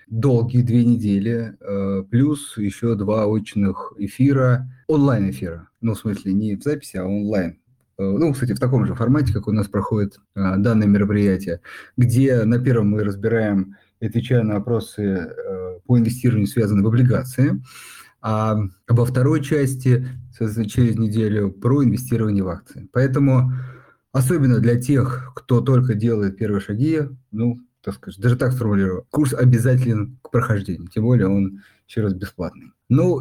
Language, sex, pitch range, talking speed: Russian, male, 100-125 Hz, 140 wpm